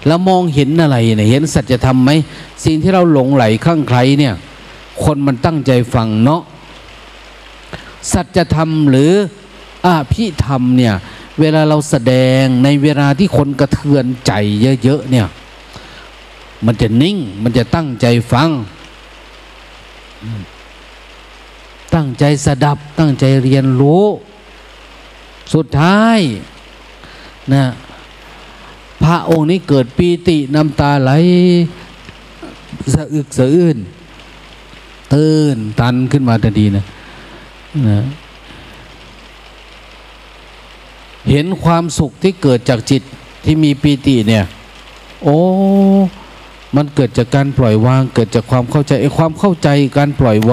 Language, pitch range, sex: Thai, 125-160 Hz, male